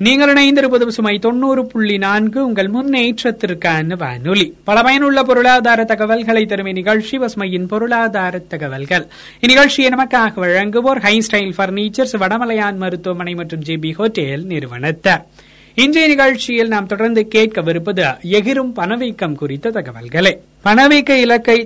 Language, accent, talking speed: Tamil, native, 110 wpm